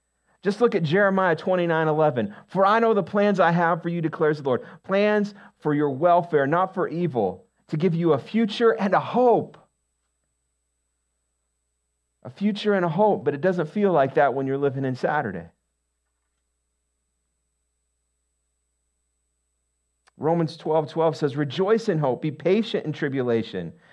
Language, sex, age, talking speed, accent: English, male, 50-69, 150 wpm, American